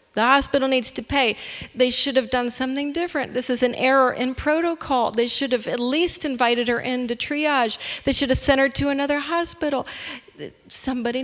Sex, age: female, 40-59